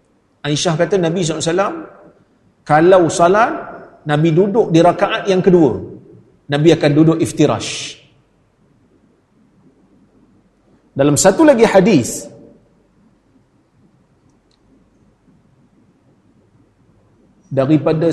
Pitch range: 140-185 Hz